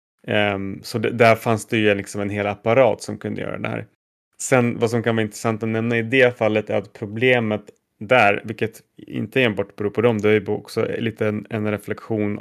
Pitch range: 105-115 Hz